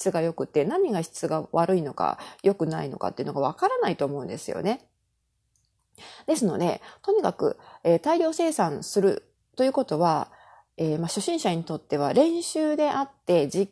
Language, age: Japanese, 30-49